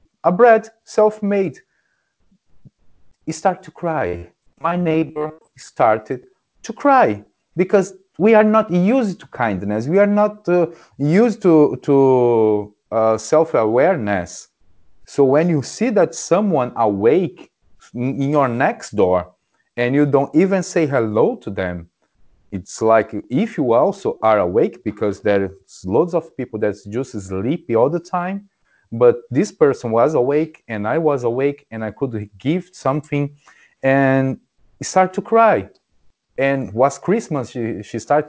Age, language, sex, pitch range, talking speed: 30-49, English, male, 110-170 Hz, 145 wpm